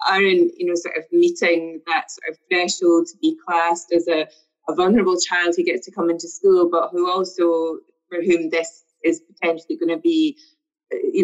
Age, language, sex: 20-39, English, female